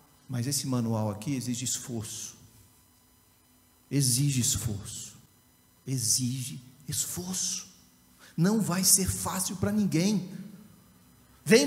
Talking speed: 85 wpm